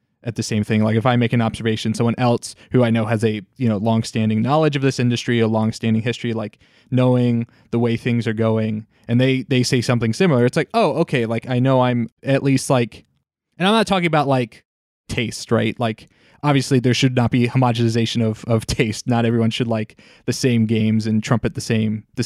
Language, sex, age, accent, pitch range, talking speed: English, male, 20-39, American, 115-130 Hz, 220 wpm